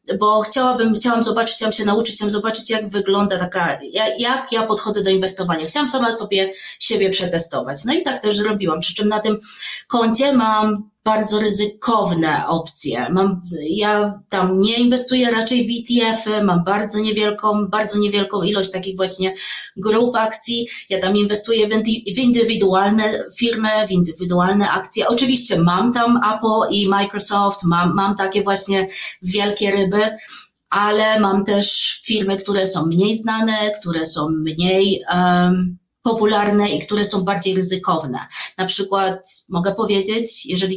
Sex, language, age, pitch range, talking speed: female, Polish, 30-49, 185-220 Hz, 140 wpm